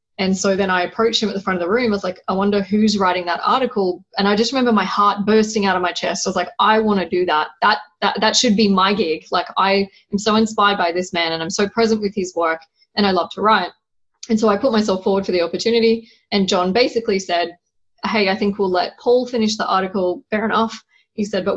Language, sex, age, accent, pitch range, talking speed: English, female, 20-39, Australian, 180-220 Hz, 260 wpm